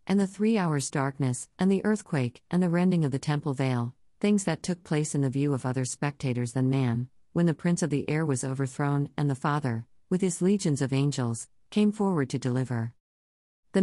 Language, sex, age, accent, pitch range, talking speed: English, female, 50-69, American, 130-180 Hz, 210 wpm